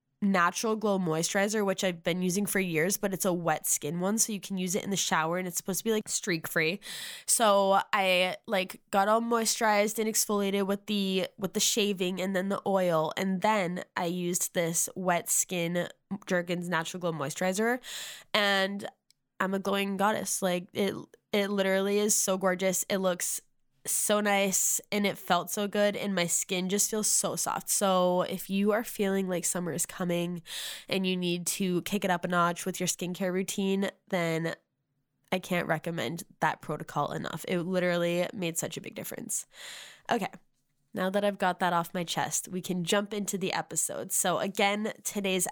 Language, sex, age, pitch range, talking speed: English, female, 10-29, 175-200 Hz, 185 wpm